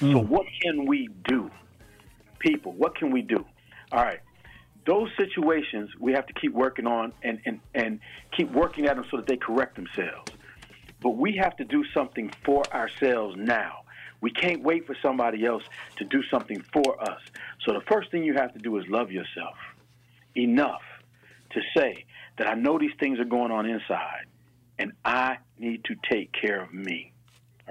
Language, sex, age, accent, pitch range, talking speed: English, male, 50-69, American, 115-140 Hz, 180 wpm